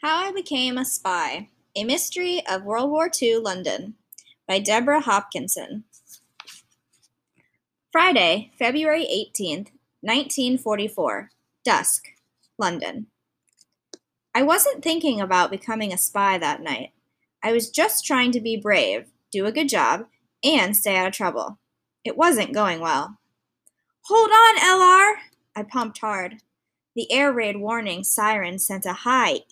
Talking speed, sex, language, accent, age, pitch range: 130 wpm, female, English, American, 10-29, 200-280 Hz